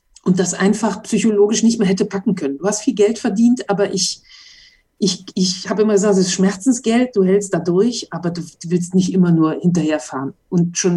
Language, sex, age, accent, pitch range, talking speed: German, female, 50-69, German, 170-205 Hz, 200 wpm